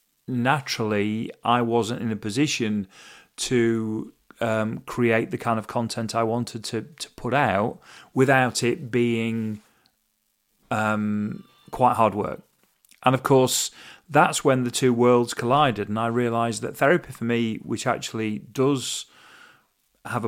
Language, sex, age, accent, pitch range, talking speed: English, male, 40-59, British, 110-130 Hz, 135 wpm